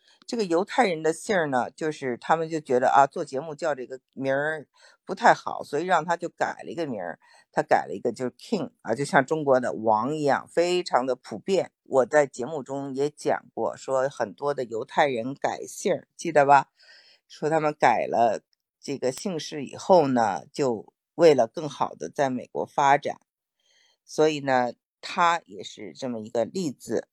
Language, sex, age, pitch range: Chinese, female, 50-69, 130-170 Hz